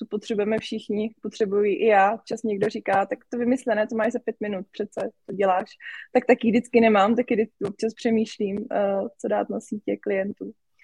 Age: 20-39